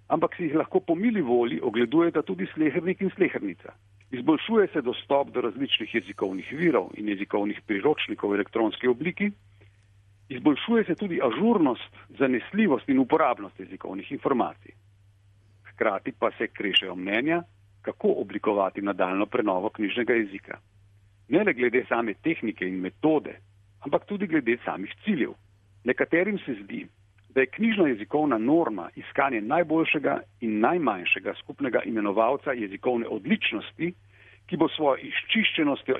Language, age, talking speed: Italian, 50-69, 130 wpm